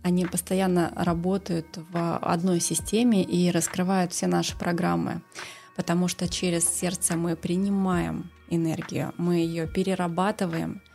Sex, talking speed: female, 115 wpm